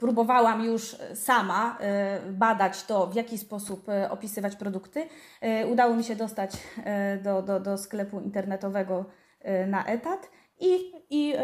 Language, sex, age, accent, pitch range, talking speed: Polish, female, 20-39, native, 200-235 Hz, 120 wpm